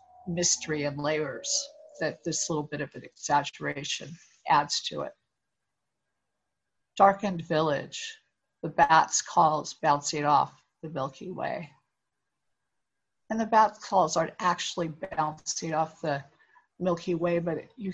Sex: female